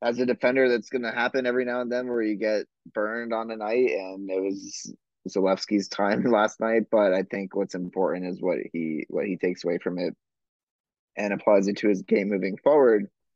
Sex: male